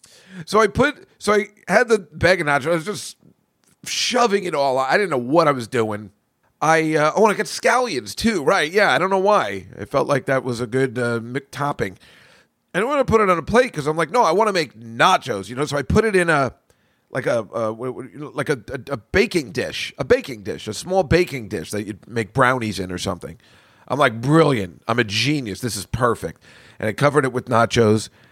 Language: English